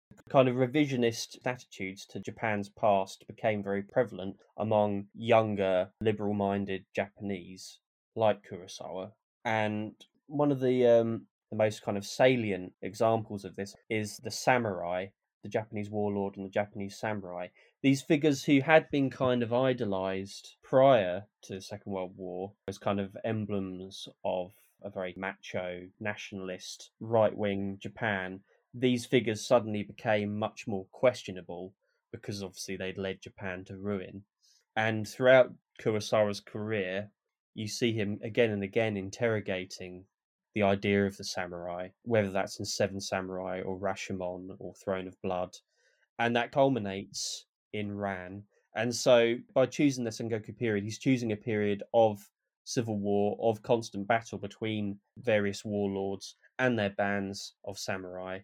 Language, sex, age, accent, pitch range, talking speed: English, male, 20-39, British, 95-115 Hz, 140 wpm